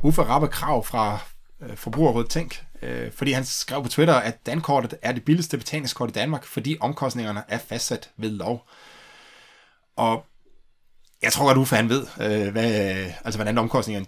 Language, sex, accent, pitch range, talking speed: Danish, male, native, 105-135 Hz, 160 wpm